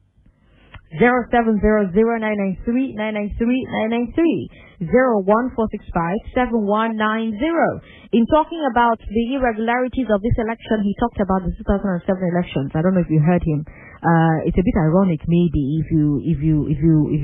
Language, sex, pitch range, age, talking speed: English, female, 150-210 Hz, 30-49, 155 wpm